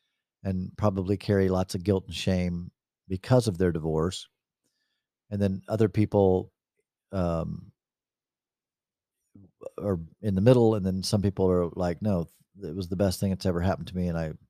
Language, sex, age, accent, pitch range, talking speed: English, male, 40-59, American, 95-140 Hz, 165 wpm